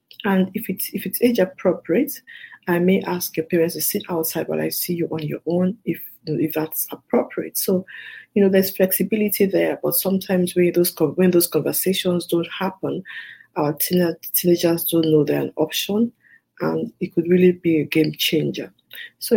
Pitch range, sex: 160-200 Hz, female